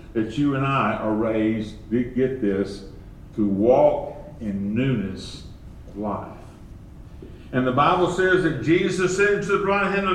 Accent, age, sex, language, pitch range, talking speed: American, 50-69, male, English, 105-165 Hz, 160 wpm